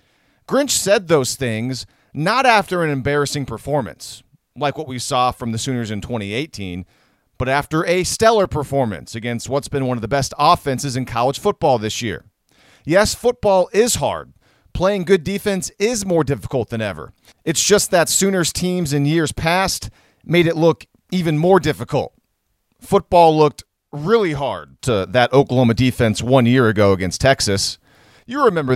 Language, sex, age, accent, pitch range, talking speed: English, male, 40-59, American, 120-165 Hz, 160 wpm